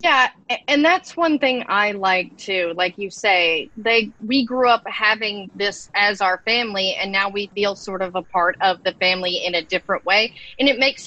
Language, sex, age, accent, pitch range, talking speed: English, female, 30-49, American, 190-255 Hz, 205 wpm